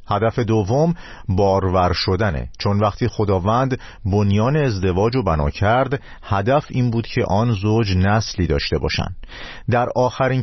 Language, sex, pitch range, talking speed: Persian, male, 90-125 Hz, 130 wpm